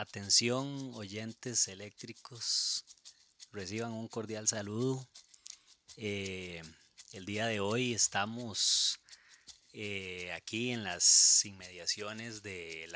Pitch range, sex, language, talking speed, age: 100-125 Hz, male, Spanish, 90 wpm, 30-49